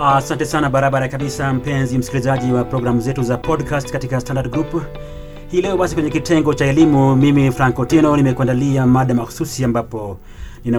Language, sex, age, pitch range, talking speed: Swahili, male, 30-49, 125-155 Hz, 160 wpm